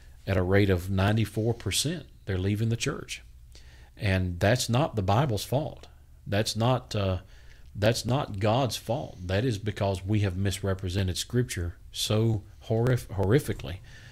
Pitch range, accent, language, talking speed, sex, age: 95-110 Hz, American, English, 145 wpm, male, 40-59